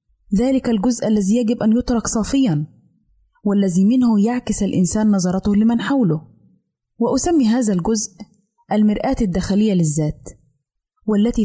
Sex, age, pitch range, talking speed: female, 20-39, 180-230 Hz, 110 wpm